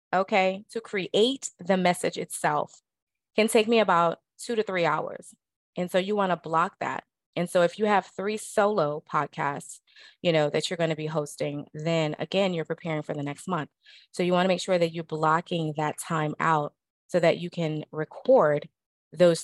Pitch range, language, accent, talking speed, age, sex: 150-180 Hz, English, American, 195 wpm, 20-39, female